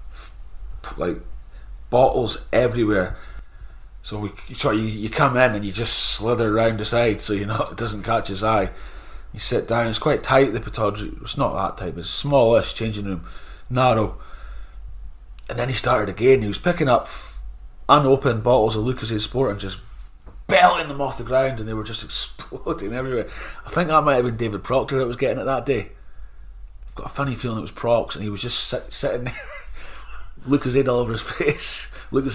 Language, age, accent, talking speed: English, 30-49, British, 200 wpm